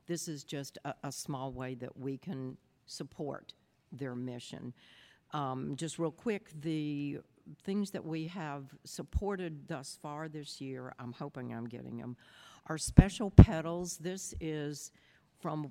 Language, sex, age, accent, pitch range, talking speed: English, female, 60-79, American, 135-160 Hz, 145 wpm